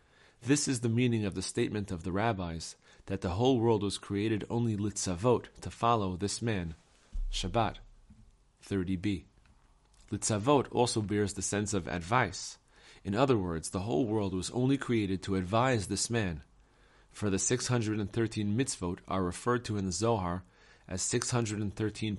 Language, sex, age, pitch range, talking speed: English, male, 30-49, 95-115 Hz, 150 wpm